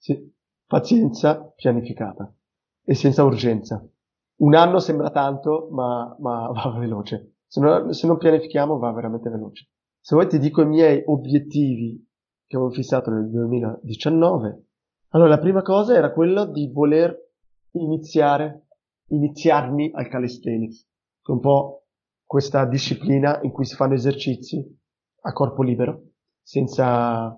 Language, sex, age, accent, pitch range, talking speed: Italian, male, 30-49, native, 120-155 Hz, 135 wpm